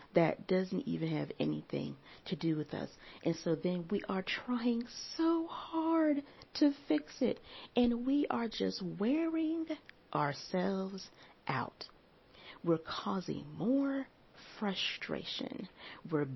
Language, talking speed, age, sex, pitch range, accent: English, 115 wpm, 40-59, female, 165-255 Hz, American